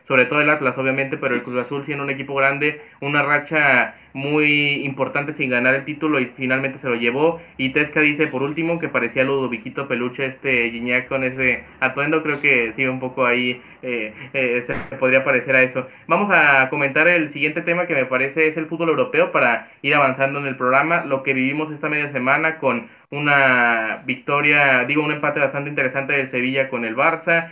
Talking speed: 200 wpm